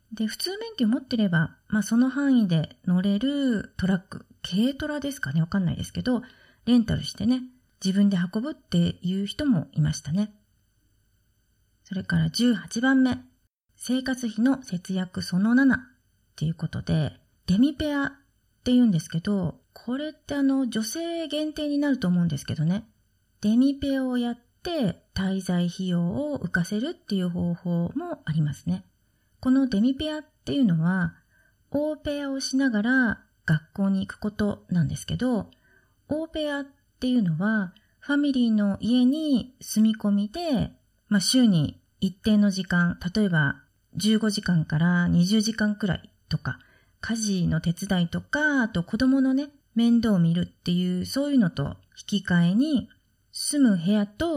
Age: 30-49